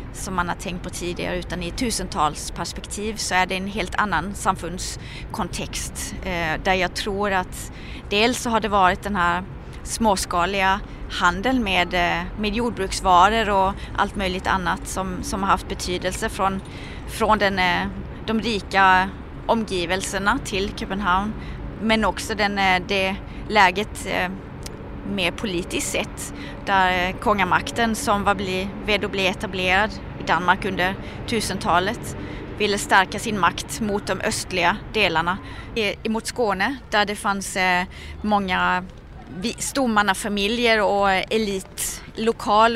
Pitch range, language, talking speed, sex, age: 185-215 Hz, Danish, 125 wpm, female, 30-49